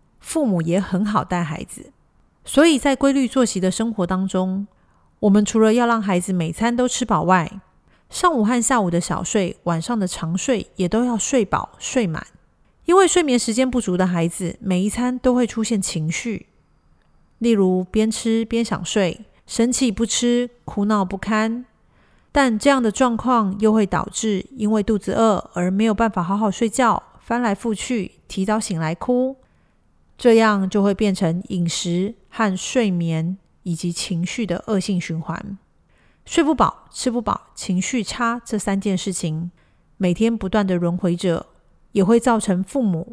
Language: Chinese